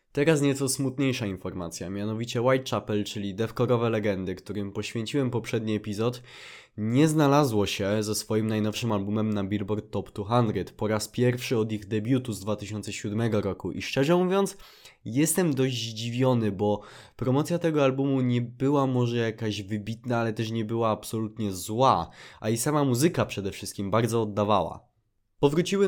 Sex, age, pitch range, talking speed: male, 20-39, 105-125 Hz, 145 wpm